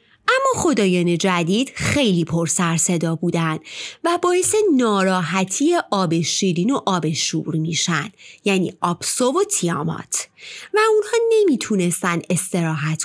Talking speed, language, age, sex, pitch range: 115 wpm, Persian, 30-49, female, 175-285 Hz